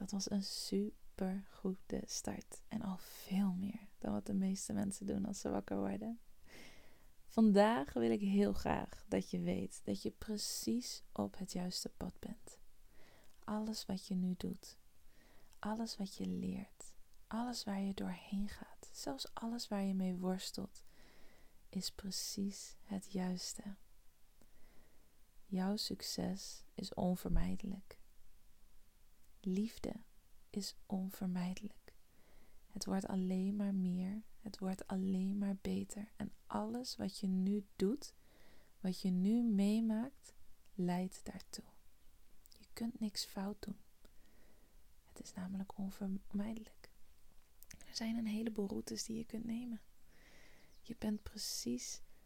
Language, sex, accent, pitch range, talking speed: Dutch, female, Dutch, 185-215 Hz, 125 wpm